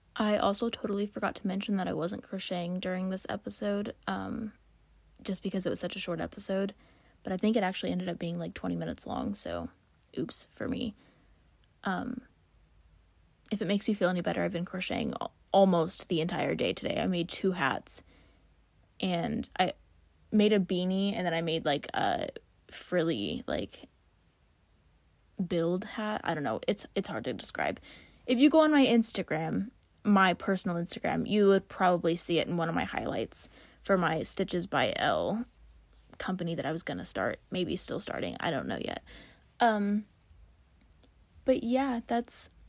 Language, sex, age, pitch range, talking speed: English, female, 20-39, 170-215 Hz, 170 wpm